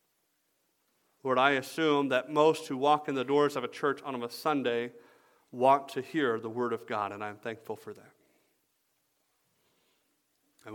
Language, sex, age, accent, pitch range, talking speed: English, male, 40-59, American, 110-135 Hz, 165 wpm